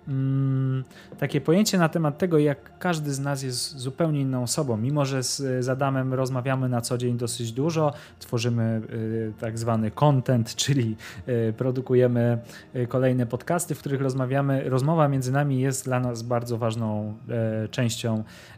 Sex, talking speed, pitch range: male, 140 wpm, 120-140 Hz